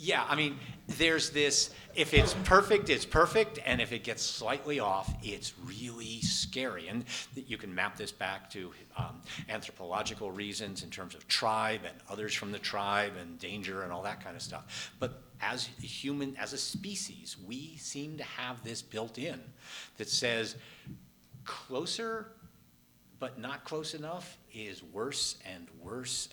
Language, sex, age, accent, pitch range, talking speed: English, male, 50-69, American, 100-135 Hz, 165 wpm